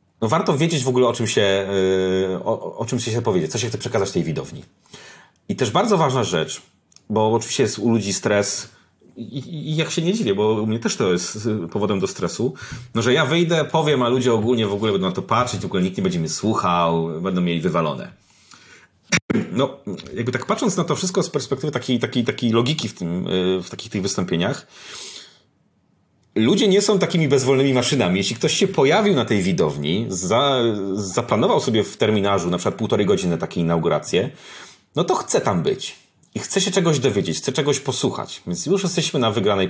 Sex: male